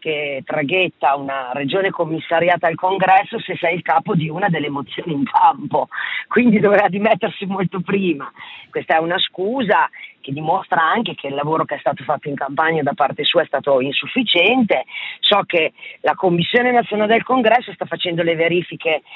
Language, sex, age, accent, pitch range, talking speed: Italian, female, 40-59, native, 155-200 Hz, 170 wpm